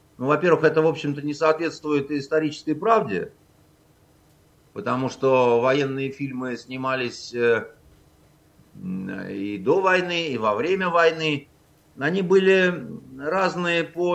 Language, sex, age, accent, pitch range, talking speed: Russian, male, 50-69, native, 140-180 Hz, 105 wpm